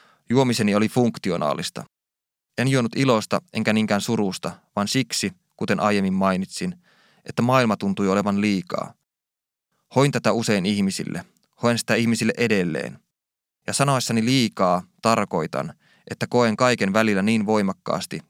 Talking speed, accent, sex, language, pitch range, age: 120 wpm, native, male, Finnish, 100-125 Hz, 20-39